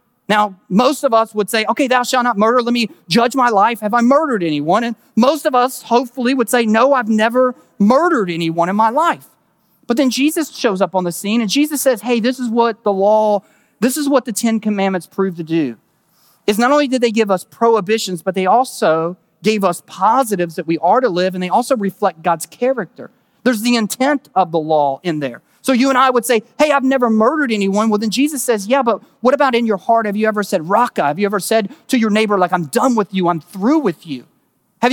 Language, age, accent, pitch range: English, 40-59, American, 180-245 Hz